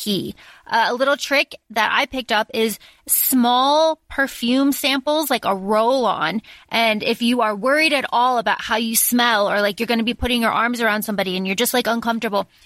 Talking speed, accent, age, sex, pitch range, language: 200 wpm, American, 20-39, female, 215-275 Hz, English